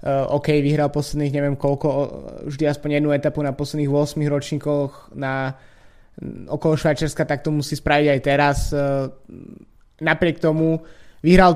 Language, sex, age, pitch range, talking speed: Slovak, male, 20-39, 140-160 Hz, 135 wpm